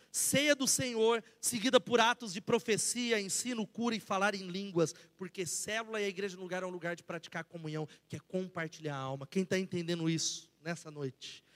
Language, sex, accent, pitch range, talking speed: Portuguese, male, Brazilian, 175-235 Hz, 200 wpm